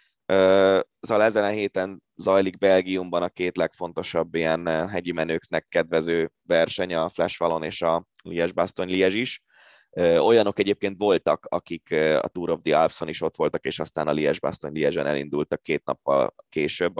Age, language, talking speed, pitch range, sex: 20-39, Hungarian, 150 wpm, 85-110 Hz, male